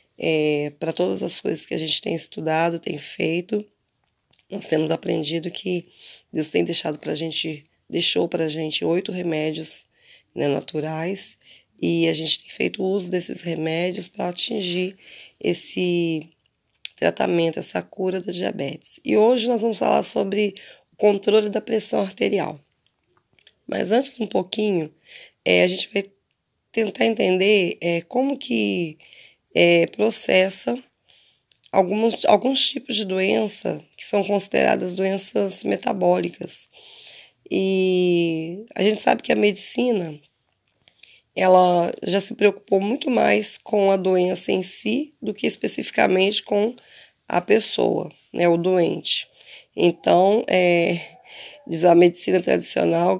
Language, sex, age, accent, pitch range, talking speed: Portuguese, female, 20-39, Brazilian, 165-205 Hz, 130 wpm